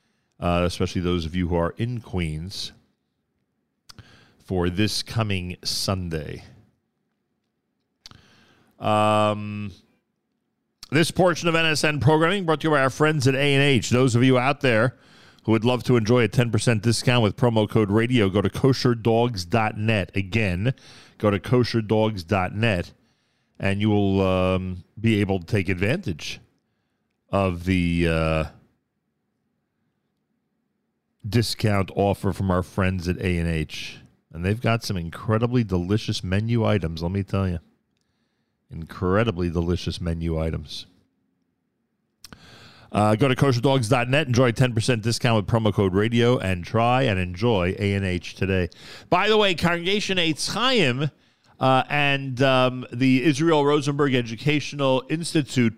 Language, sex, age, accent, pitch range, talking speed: English, male, 40-59, American, 95-130 Hz, 125 wpm